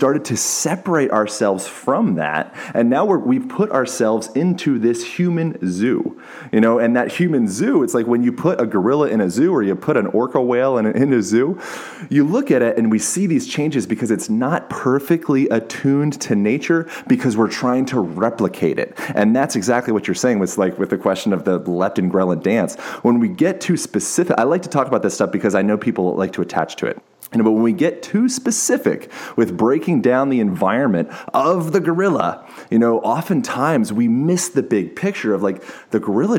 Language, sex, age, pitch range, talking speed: English, male, 30-49, 105-170 Hz, 210 wpm